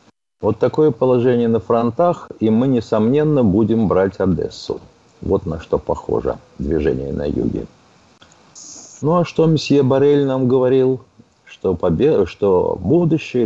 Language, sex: Russian, male